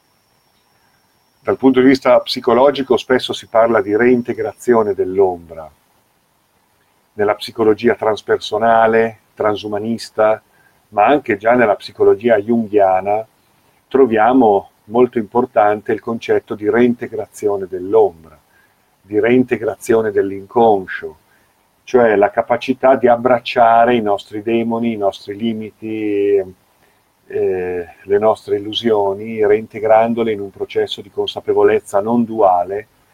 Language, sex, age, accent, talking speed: Italian, male, 50-69, native, 100 wpm